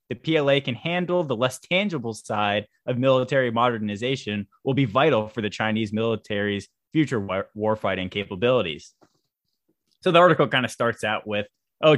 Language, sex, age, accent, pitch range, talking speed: English, male, 20-39, American, 105-125 Hz, 155 wpm